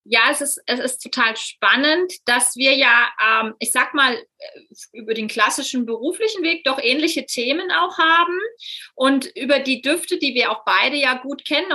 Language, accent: German, German